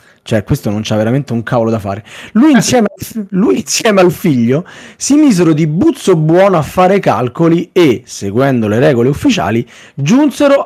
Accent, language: native, Italian